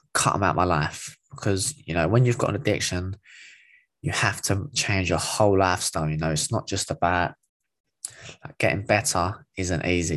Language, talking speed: English, 175 wpm